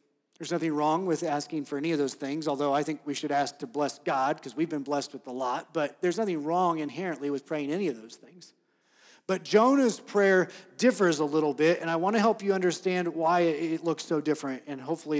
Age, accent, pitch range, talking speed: 40-59, American, 160-220 Hz, 230 wpm